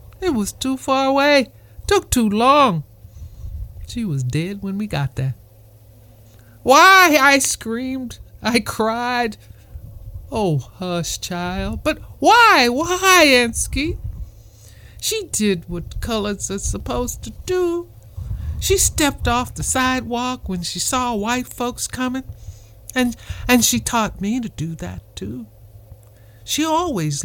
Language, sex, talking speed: English, male, 125 wpm